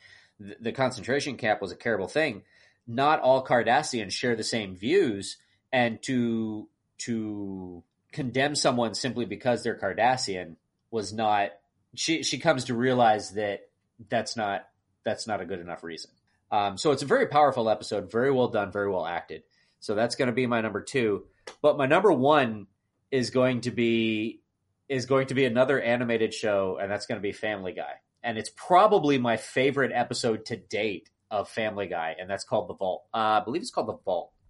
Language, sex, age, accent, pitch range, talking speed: English, male, 30-49, American, 105-135 Hz, 185 wpm